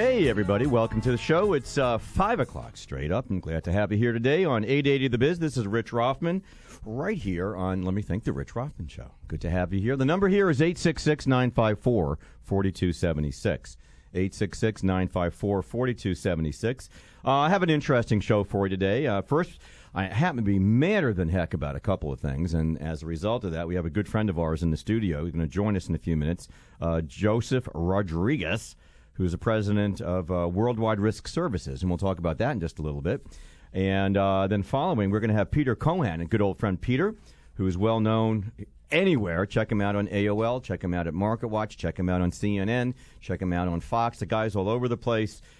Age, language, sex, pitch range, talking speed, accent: 50-69, English, male, 90-115 Hz, 215 wpm, American